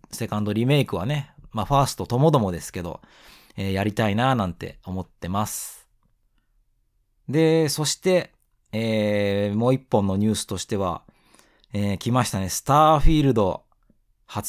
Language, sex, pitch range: Japanese, male, 100-135 Hz